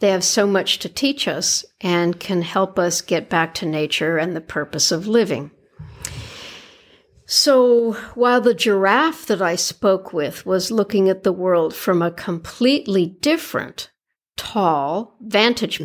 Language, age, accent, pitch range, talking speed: English, 60-79, American, 175-270 Hz, 150 wpm